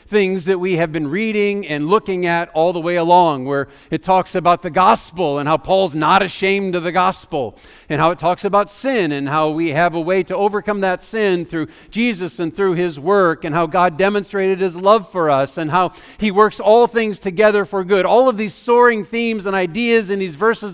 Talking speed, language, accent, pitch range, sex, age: 220 wpm, English, American, 175-215 Hz, male, 50-69